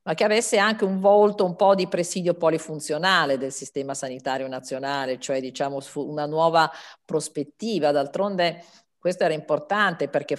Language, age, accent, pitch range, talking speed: Italian, 50-69, native, 135-170 Hz, 145 wpm